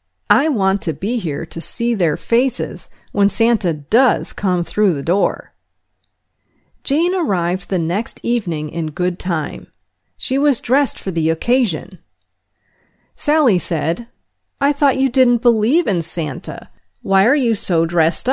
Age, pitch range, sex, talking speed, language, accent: 40-59, 160-235 Hz, female, 145 wpm, English, American